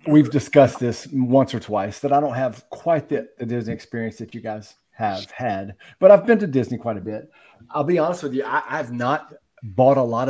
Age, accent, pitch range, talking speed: 40-59, American, 115-135 Hz, 225 wpm